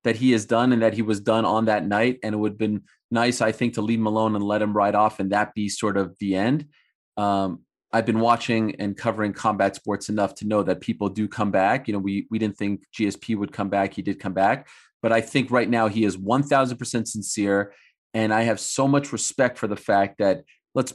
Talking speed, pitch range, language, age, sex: 250 wpm, 105-140 Hz, English, 30-49, male